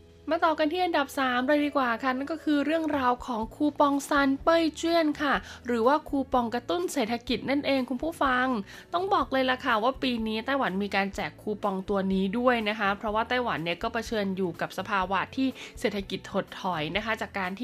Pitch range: 195-255 Hz